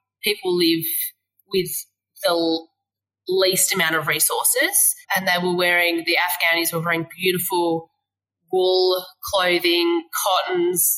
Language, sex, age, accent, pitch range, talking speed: English, female, 20-39, Australian, 165-230 Hz, 110 wpm